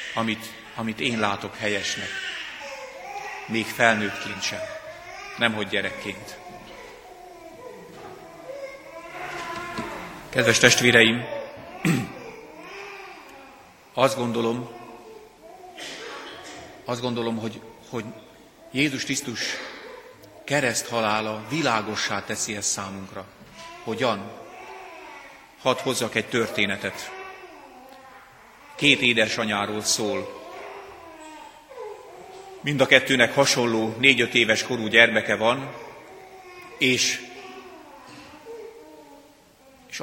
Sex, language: male, Hungarian